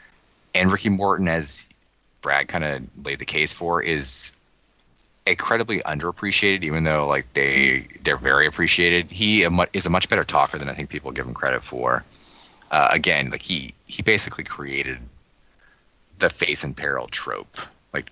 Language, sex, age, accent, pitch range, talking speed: English, male, 20-39, American, 70-85 Hz, 160 wpm